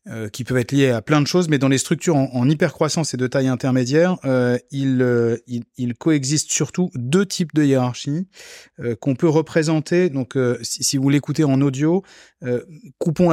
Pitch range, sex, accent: 125-155 Hz, male, French